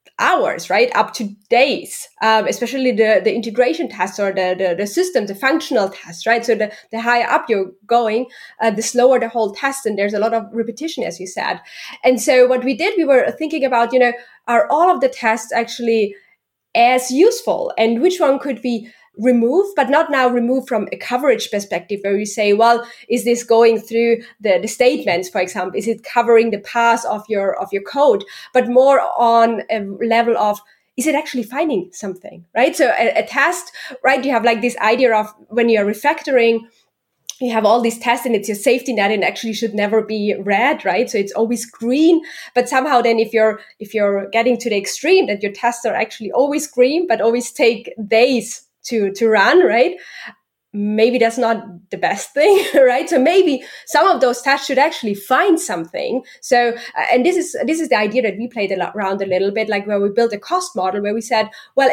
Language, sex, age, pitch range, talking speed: English, female, 20-39, 215-265 Hz, 210 wpm